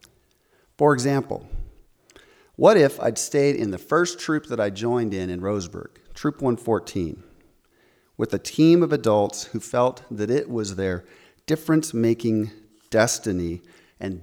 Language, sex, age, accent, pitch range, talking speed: English, male, 40-59, American, 110-165 Hz, 135 wpm